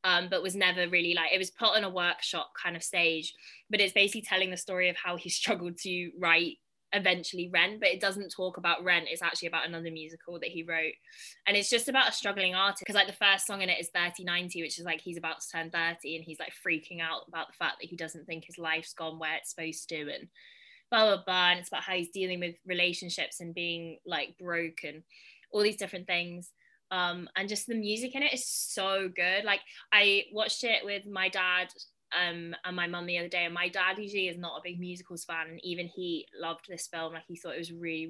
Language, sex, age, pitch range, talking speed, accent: English, female, 20-39, 170-200 Hz, 240 wpm, British